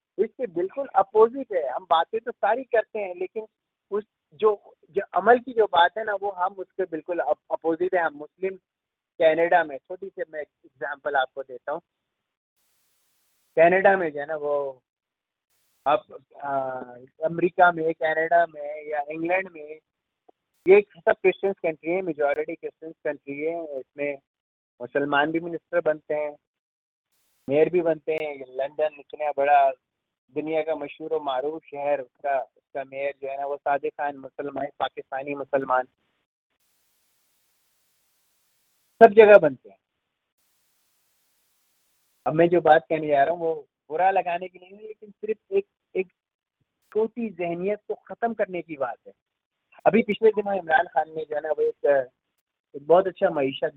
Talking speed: 80 wpm